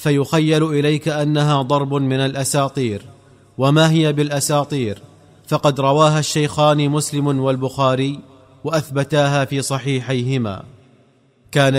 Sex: male